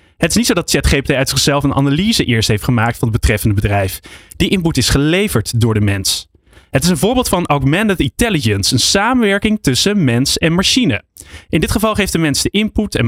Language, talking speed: Dutch, 210 wpm